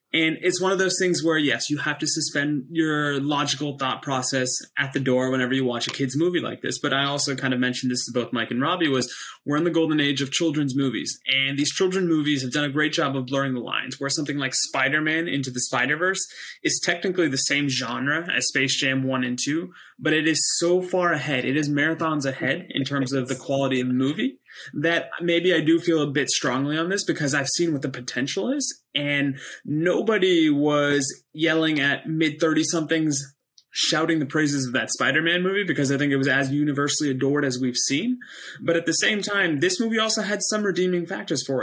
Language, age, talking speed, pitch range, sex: English, 20-39, 220 wpm, 135-165 Hz, male